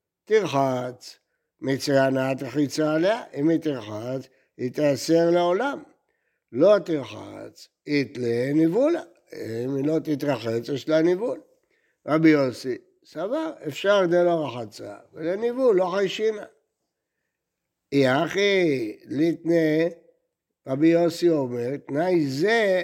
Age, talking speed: 60-79, 100 wpm